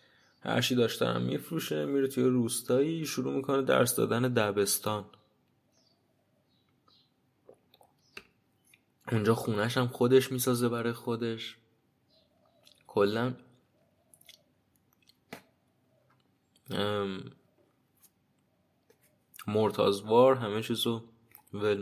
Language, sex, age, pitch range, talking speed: Persian, male, 20-39, 100-130 Hz, 65 wpm